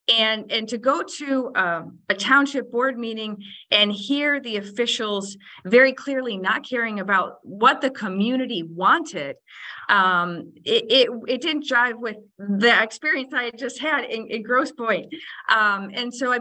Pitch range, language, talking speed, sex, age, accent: 210-270 Hz, English, 160 wpm, female, 40-59, American